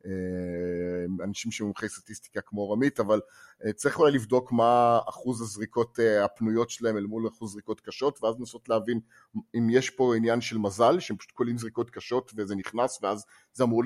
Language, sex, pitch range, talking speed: English, male, 110-130 Hz, 95 wpm